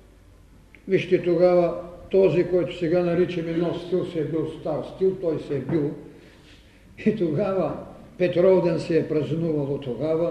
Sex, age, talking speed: male, 50-69, 145 wpm